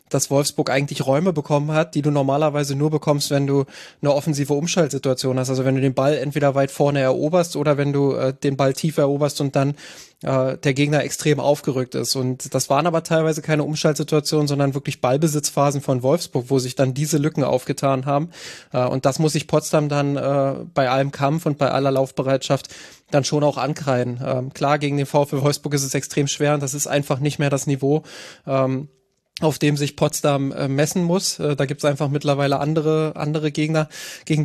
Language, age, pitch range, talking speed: German, 20-39, 140-155 Hz, 195 wpm